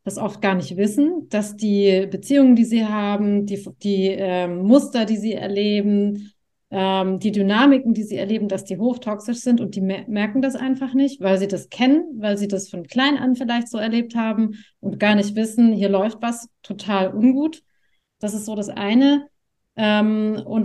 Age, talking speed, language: 30-49, 185 wpm, German